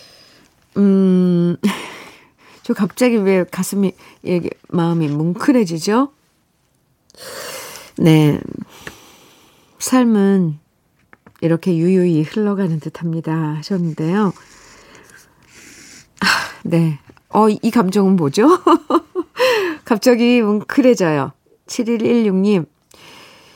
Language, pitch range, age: Korean, 165-210 Hz, 40-59